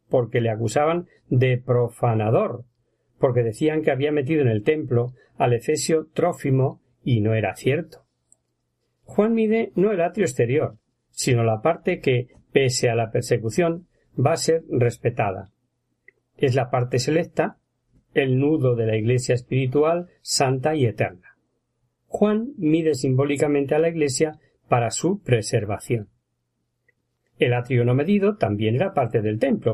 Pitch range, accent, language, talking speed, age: 120-165 Hz, Spanish, Spanish, 140 wpm, 50-69